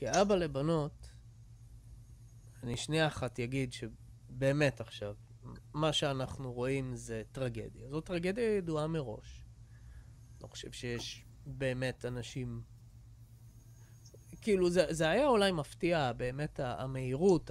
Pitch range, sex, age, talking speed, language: 115-155 Hz, male, 20-39, 105 wpm, English